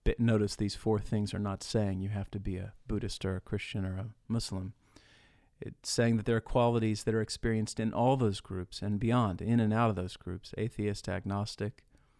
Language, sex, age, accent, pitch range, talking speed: English, male, 40-59, American, 100-115 Hz, 205 wpm